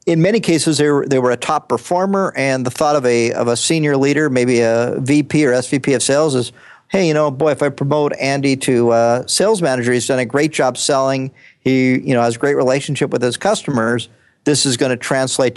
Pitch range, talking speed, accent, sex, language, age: 125-150 Hz, 230 wpm, American, male, English, 50-69